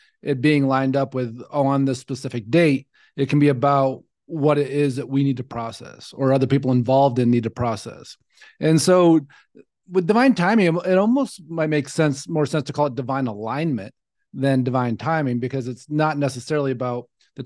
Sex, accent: male, American